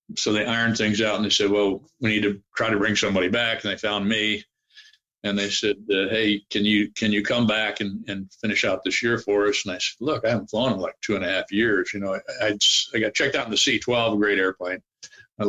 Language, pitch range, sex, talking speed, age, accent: English, 100-120 Hz, male, 270 wpm, 50-69, American